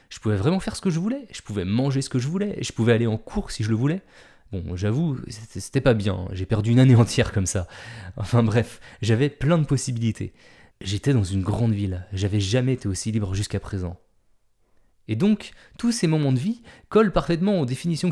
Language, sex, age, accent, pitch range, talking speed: French, male, 20-39, French, 100-145 Hz, 215 wpm